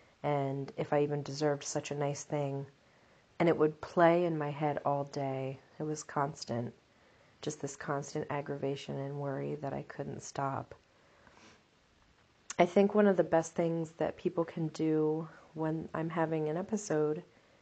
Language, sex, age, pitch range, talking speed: English, female, 30-49, 150-175 Hz, 160 wpm